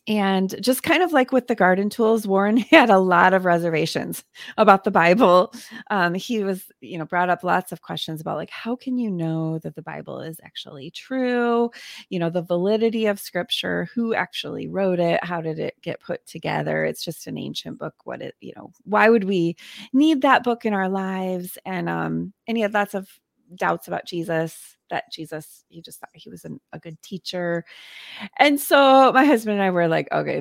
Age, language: 30-49, English